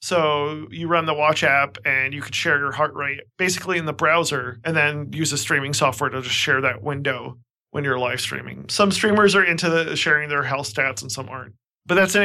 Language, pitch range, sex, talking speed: English, 140-170 Hz, male, 230 wpm